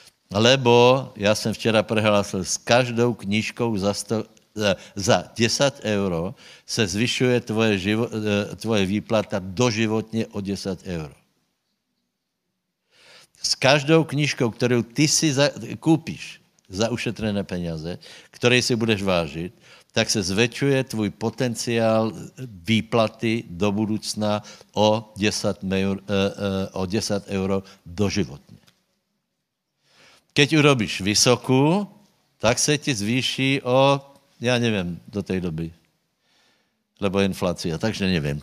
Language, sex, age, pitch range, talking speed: Slovak, male, 60-79, 100-125 Hz, 110 wpm